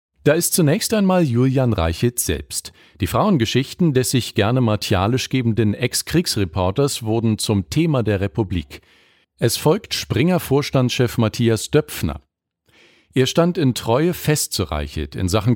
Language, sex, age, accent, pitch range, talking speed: German, male, 50-69, German, 100-140 Hz, 130 wpm